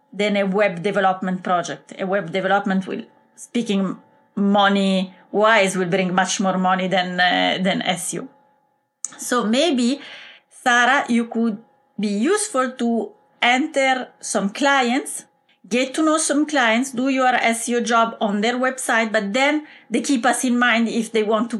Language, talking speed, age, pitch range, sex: English, 155 wpm, 30-49, 200-260 Hz, female